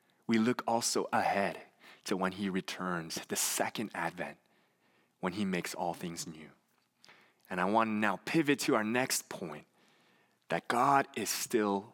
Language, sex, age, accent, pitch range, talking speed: English, male, 20-39, American, 95-150 Hz, 155 wpm